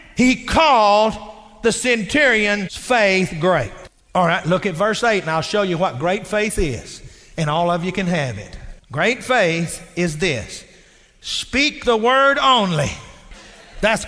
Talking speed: 155 wpm